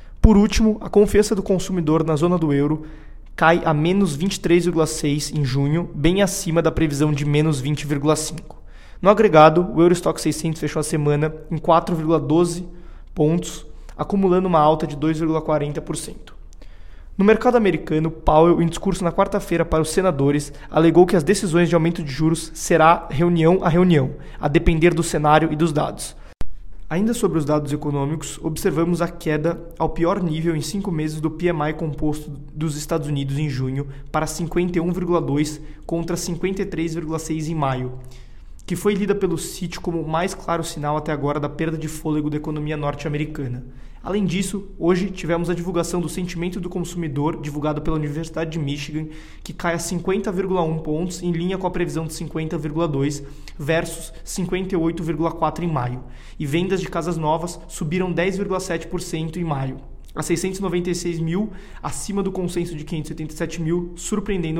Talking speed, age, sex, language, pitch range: 155 wpm, 20-39, male, Portuguese, 150-175 Hz